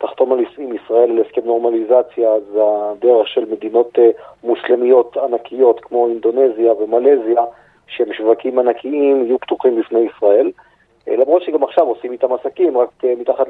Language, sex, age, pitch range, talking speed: Hebrew, male, 40-59, 120-150 Hz, 130 wpm